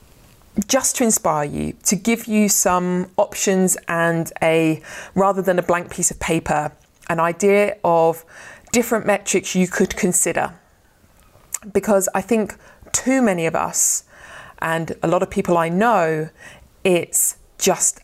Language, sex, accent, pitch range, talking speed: English, female, British, 165-195 Hz, 140 wpm